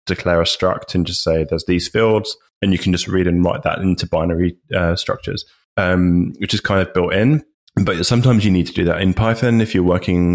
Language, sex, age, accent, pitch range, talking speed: English, male, 20-39, British, 90-100 Hz, 230 wpm